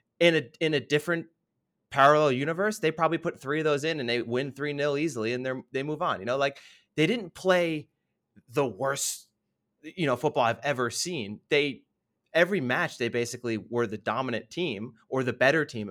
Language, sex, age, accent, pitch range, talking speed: English, male, 30-49, American, 120-155 Hz, 190 wpm